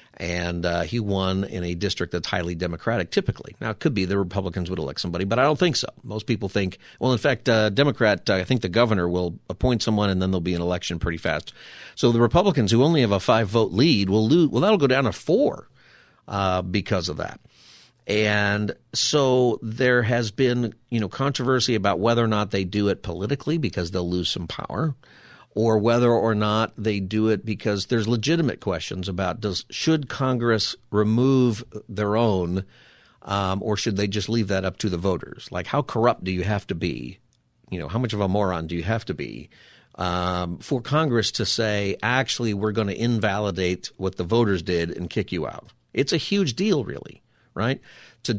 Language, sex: English, male